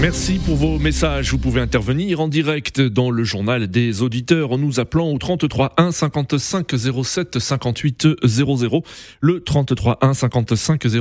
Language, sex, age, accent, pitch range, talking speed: French, male, 30-49, French, 115-145 Hz, 155 wpm